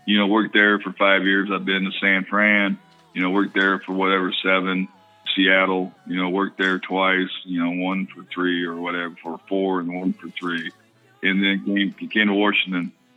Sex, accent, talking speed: male, American, 200 wpm